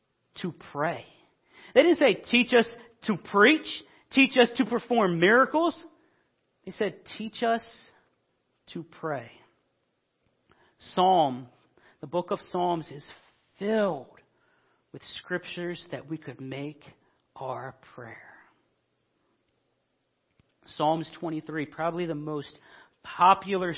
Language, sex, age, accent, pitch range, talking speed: English, male, 40-59, American, 155-200 Hz, 105 wpm